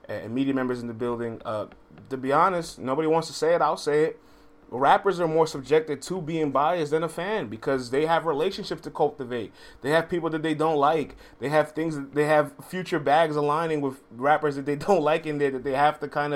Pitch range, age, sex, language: 115-150 Hz, 20-39, male, English